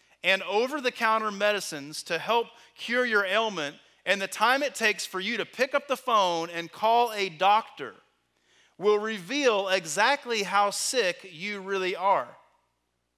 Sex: male